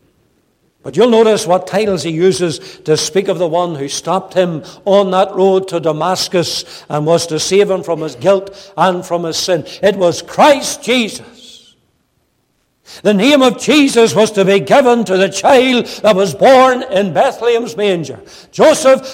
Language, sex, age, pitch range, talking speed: English, male, 60-79, 170-235 Hz, 170 wpm